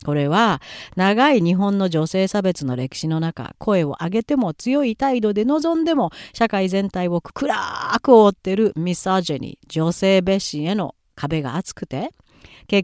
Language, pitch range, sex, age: Japanese, 165-240 Hz, female, 40-59